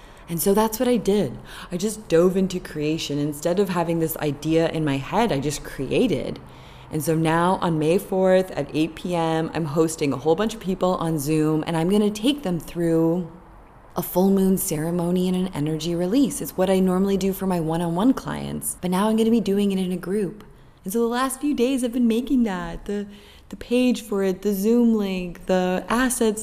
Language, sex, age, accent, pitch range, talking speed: English, female, 20-39, American, 165-215 Hz, 210 wpm